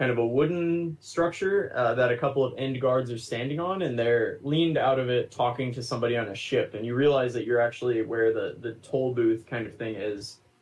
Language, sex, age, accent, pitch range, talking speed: English, male, 20-39, American, 105-135 Hz, 235 wpm